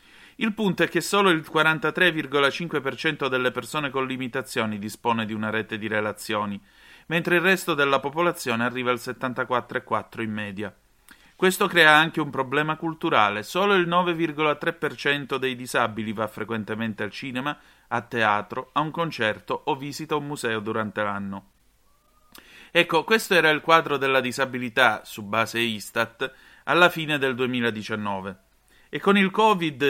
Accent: native